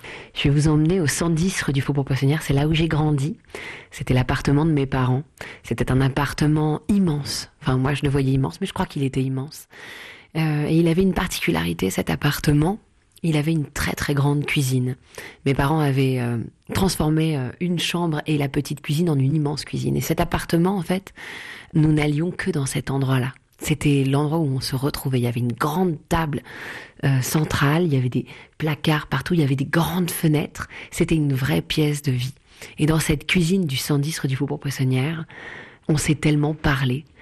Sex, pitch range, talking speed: female, 135-160 Hz, 200 wpm